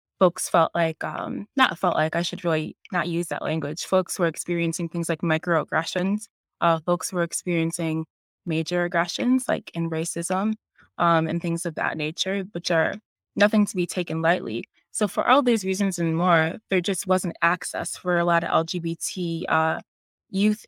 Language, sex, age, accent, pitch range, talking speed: English, female, 20-39, American, 165-185 Hz, 175 wpm